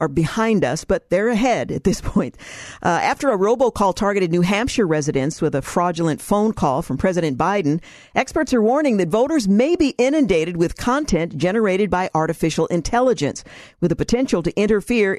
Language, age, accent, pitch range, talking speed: English, 50-69, American, 165-215 Hz, 175 wpm